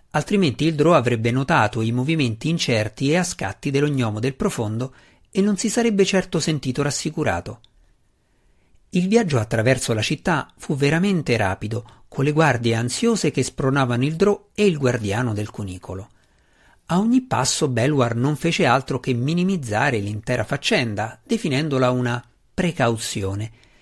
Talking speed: 140 wpm